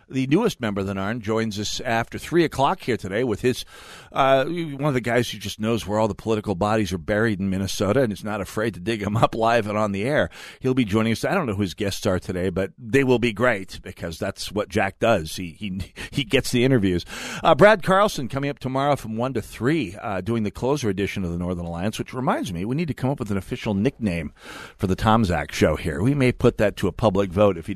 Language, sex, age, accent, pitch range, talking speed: English, male, 50-69, American, 100-135 Hz, 255 wpm